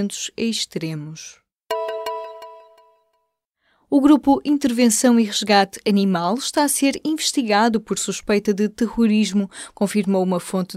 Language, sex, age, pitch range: Portuguese, female, 20-39, 185-240 Hz